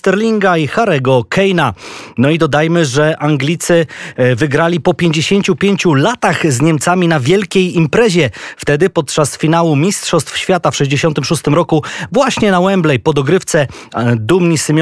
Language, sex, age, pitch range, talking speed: Polish, male, 20-39, 145-175 Hz, 125 wpm